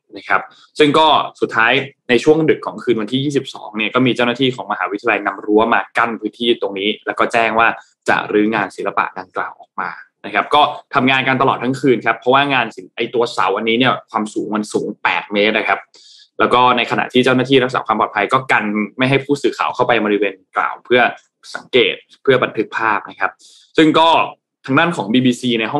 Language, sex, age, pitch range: Thai, male, 20-39, 110-140 Hz